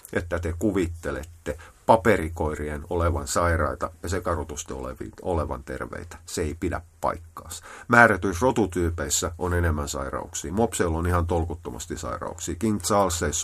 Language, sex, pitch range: Finnish, male, 80-100 Hz